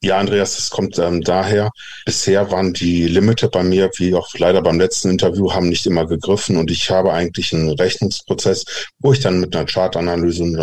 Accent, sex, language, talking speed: German, male, German, 190 wpm